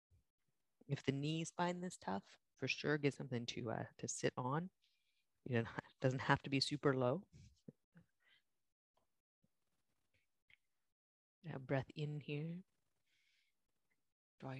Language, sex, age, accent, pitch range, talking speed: English, female, 30-49, American, 135-170 Hz, 110 wpm